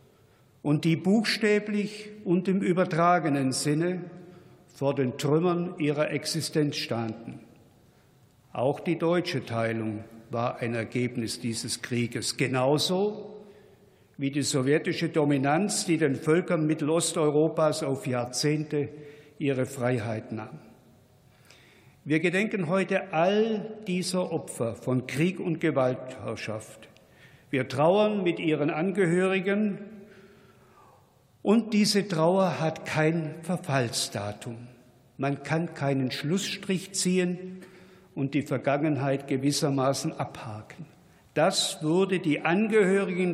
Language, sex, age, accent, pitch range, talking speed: German, male, 60-79, German, 135-185 Hz, 100 wpm